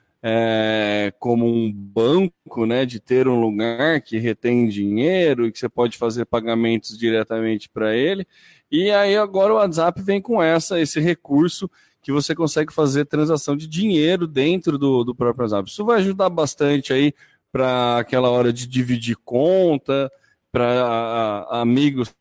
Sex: male